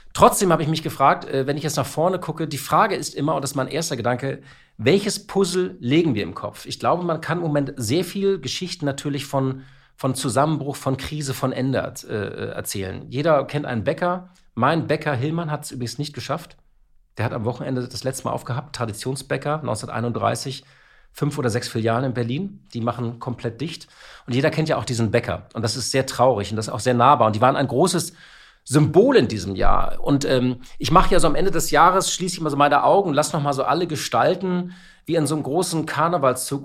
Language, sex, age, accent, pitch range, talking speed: German, male, 40-59, German, 120-155 Hz, 215 wpm